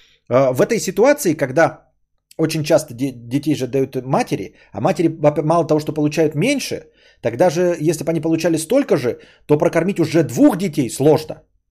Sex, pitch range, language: male, 135-180 Hz, Bulgarian